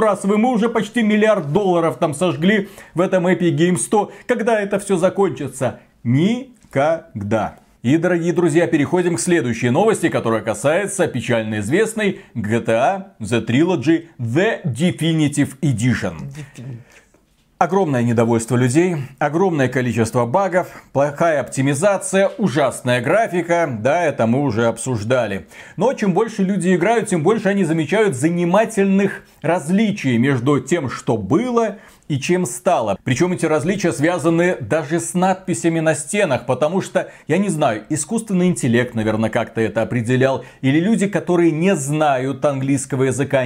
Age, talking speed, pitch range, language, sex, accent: 40-59, 135 wpm, 135-190 Hz, Russian, male, native